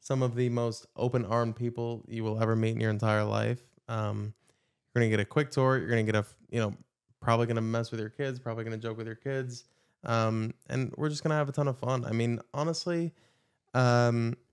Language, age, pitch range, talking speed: English, 20-39, 110-125 Hz, 240 wpm